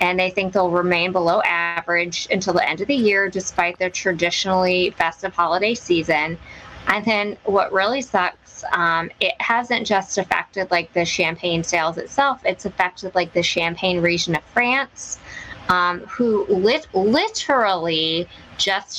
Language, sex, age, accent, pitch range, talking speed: English, female, 20-39, American, 170-210 Hz, 145 wpm